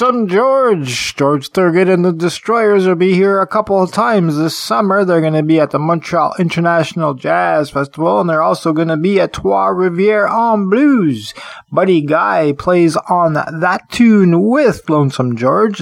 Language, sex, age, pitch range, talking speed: English, male, 20-39, 150-205 Hz, 170 wpm